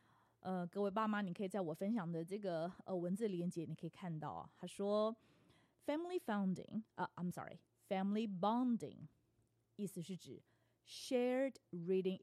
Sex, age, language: female, 30-49, Chinese